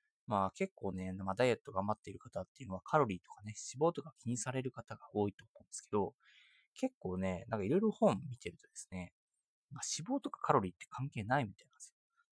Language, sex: Japanese, male